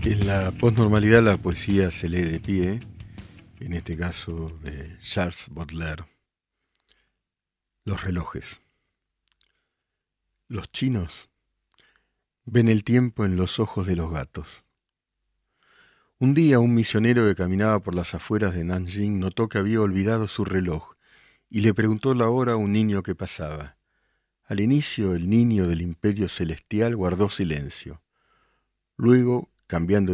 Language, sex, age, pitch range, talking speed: Spanish, male, 50-69, 85-110 Hz, 130 wpm